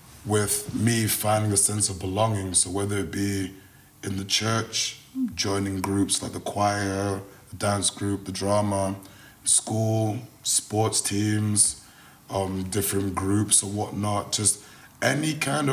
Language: English